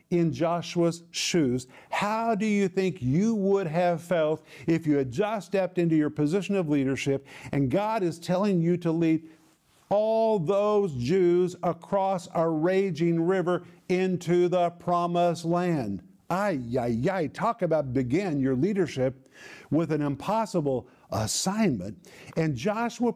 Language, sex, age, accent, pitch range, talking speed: English, male, 50-69, American, 150-185 Hz, 135 wpm